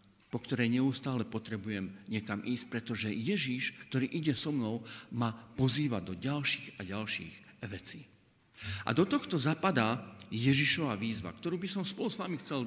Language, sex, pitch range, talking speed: Slovak, male, 110-180 Hz, 150 wpm